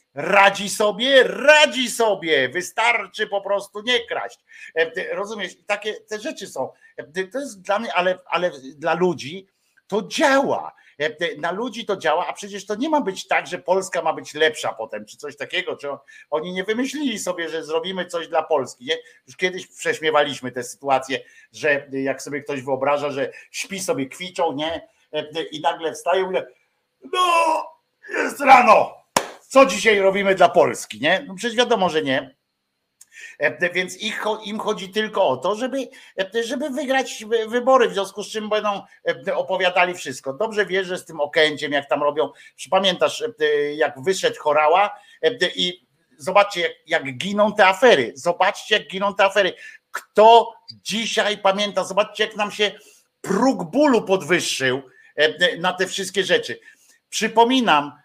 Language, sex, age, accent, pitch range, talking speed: Polish, male, 50-69, native, 160-230 Hz, 145 wpm